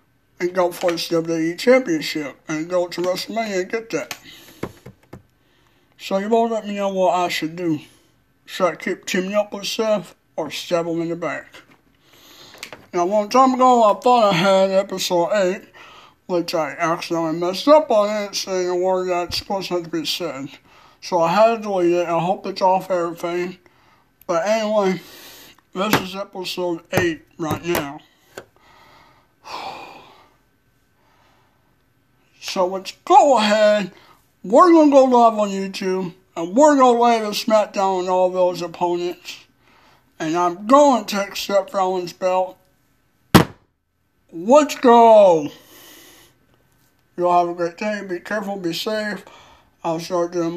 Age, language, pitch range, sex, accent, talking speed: 60-79, English, 175-215 Hz, male, American, 150 wpm